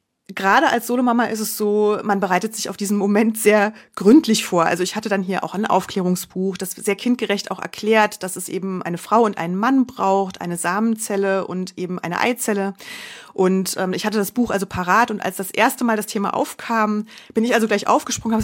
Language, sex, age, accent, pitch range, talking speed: German, female, 30-49, German, 195-240 Hz, 210 wpm